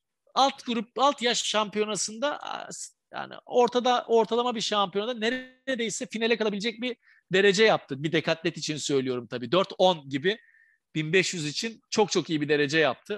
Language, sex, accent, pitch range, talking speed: Turkish, male, native, 150-220 Hz, 140 wpm